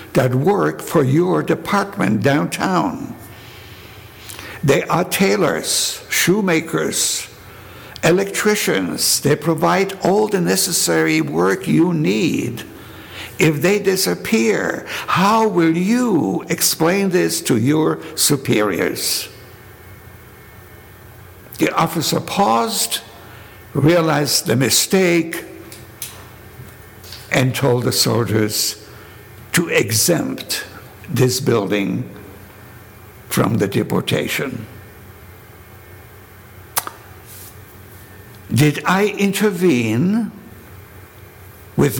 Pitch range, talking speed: 105-160 Hz, 75 wpm